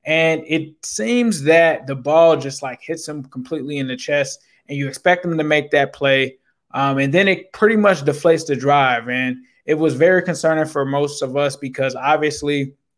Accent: American